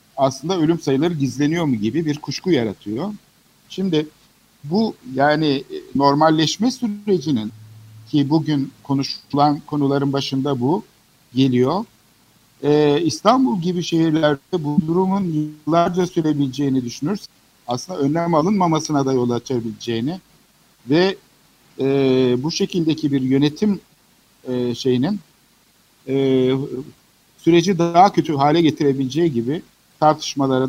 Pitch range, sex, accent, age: 130-175 Hz, male, native, 60-79